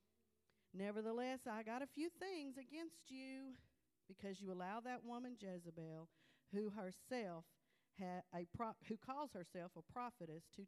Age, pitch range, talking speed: 40-59, 165-215 Hz, 120 wpm